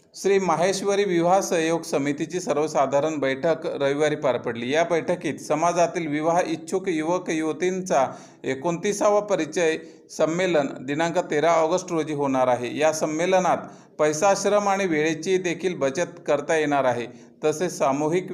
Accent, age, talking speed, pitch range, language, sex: native, 40-59, 125 wpm, 145-175 Hz, Marathi, male